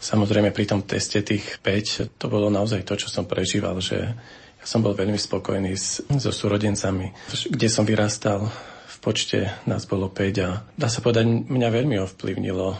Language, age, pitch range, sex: Slovak, 40-59, 95-110 Hz, male